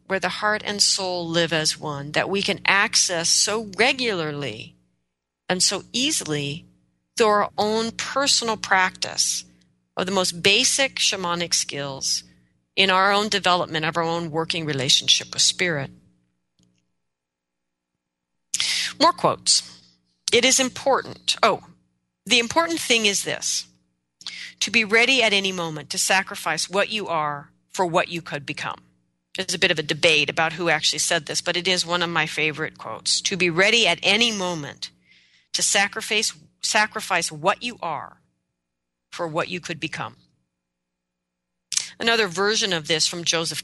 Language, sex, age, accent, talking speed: English, female, 40-59, American, 150 wpm